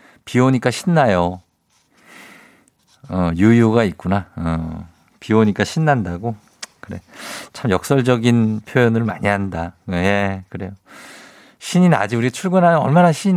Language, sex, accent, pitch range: Korean, male, native, 95-135 Hz